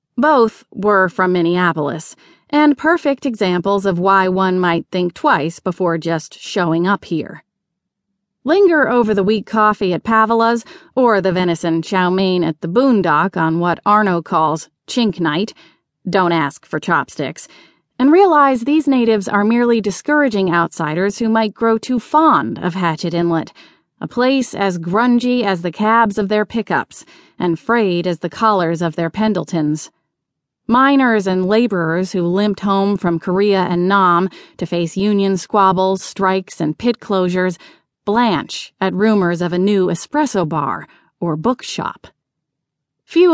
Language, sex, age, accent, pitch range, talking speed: English, female, 30-49, American, 175-230 Hz, 145 wpm